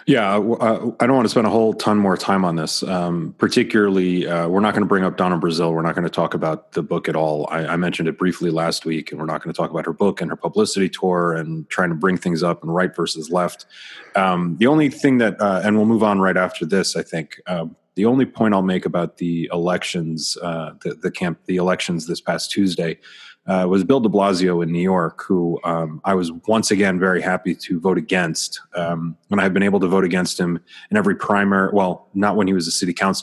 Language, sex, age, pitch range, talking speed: English, male, 30-49, 85-105 Hz, 245 wpm